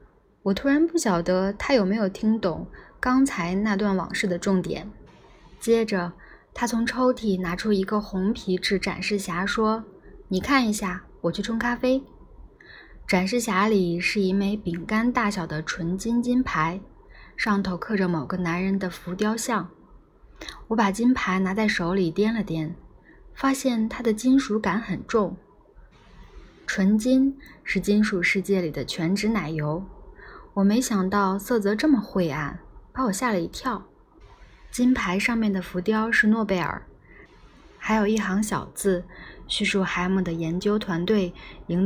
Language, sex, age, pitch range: Chinese, female, 20-39, 180-225 Hz